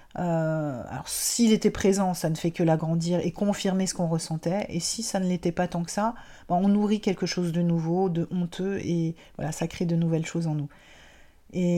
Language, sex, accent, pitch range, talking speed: French, female, French, 165-210 Hz, 220 wpm